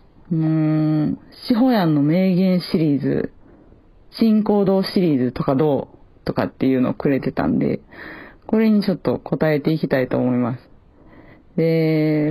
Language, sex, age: Japanese, female, 40-59